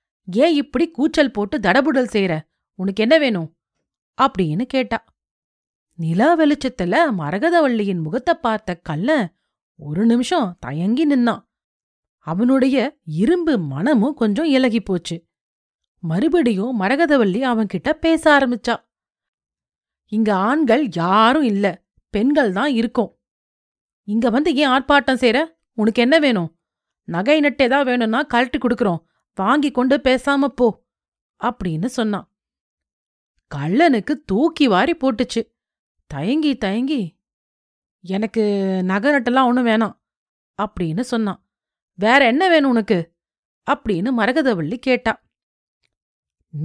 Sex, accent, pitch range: female, native, 200-280 Hz